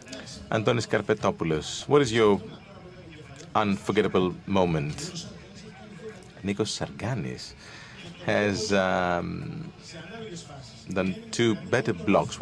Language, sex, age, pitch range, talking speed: Greek, male, 40-59, 100-145 Hz, 70 wpm